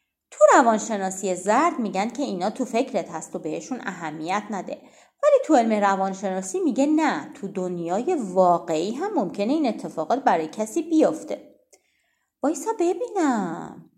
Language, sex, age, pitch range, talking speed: Persian, female, 30-49, 190-290 Hz, 130 wpm